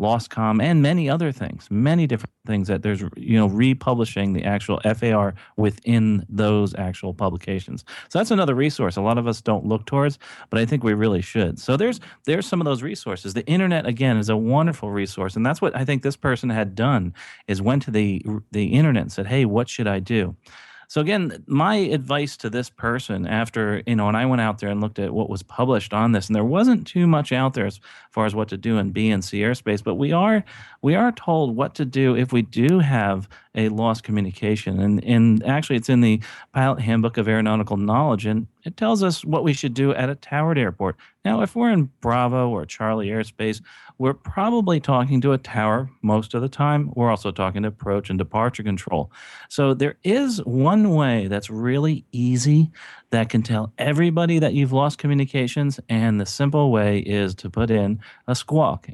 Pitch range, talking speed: 105-140 Hz, 210 wpm